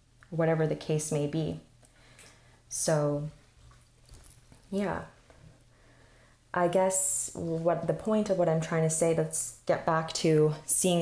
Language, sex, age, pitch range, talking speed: English, female, 20-39, 145-175 Hz, 125 wpm